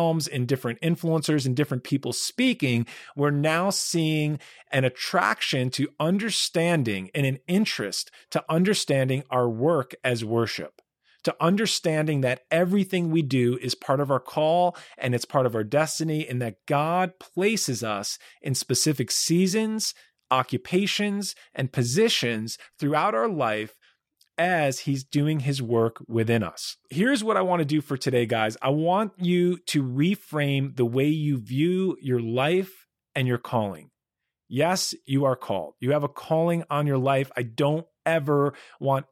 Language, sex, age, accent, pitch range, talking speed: English, male, 40-59, American, 125-165 Hz, 150 wpm